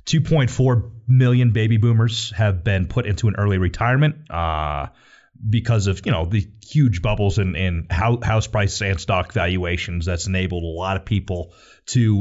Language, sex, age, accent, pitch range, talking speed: English, male, 30-49, American, 95-115 Hz, 165 wpm